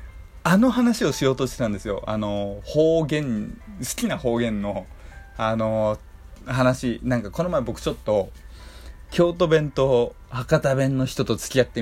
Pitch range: 95-155 Hz